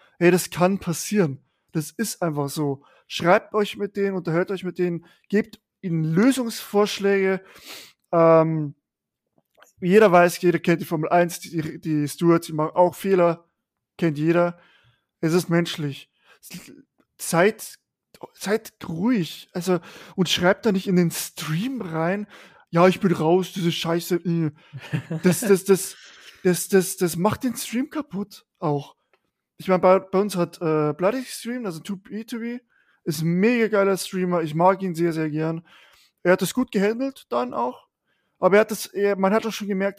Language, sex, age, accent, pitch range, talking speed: German, male, 20-39, German, 165-200 Hz, 160 wpm